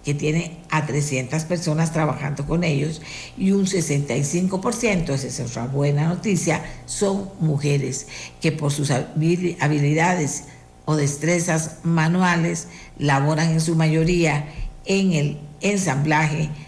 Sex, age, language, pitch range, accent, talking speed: female, 50-69, Spanish, 145-175 Hz, American, 115 wpm